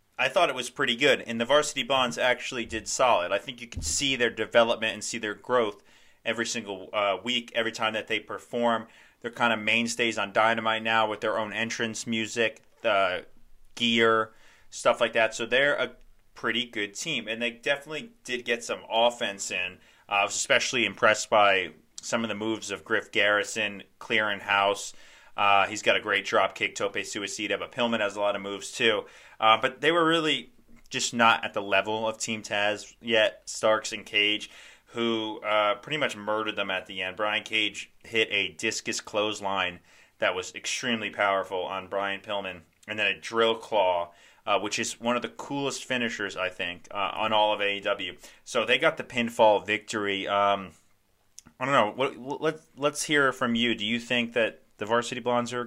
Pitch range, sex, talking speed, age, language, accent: 100-120 Hz, male, 190 wpm, 30-49, English, American